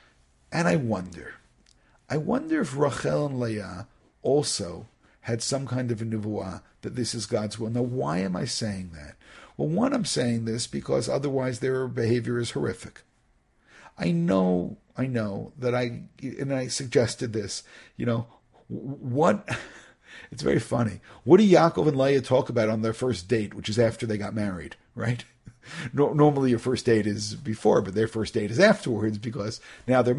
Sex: male